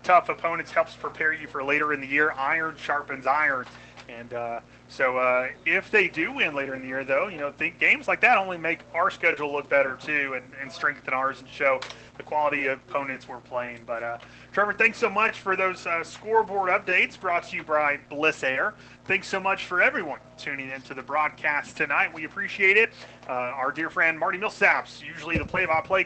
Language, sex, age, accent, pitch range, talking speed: English, male, 30-49, American, 135-190 Hz, 205 wpm